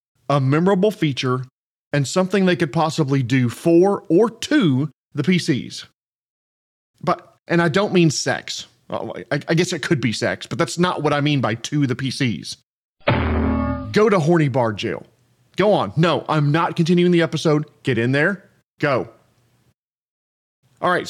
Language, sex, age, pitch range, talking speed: English, male, 40-59, 125-175 Hz, 160 wpm